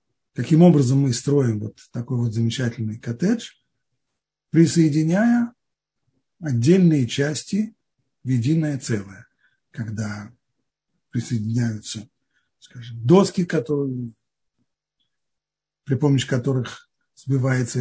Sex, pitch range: male, 120-160 Hz